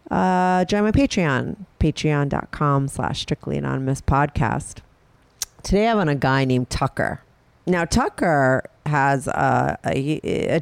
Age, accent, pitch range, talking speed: 40-59, American, 135-180 Hz, 105 wpm